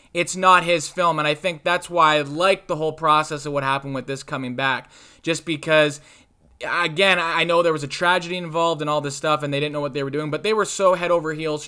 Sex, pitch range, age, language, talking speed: male, 150-180 Hz, 20-39, English, 255 wpm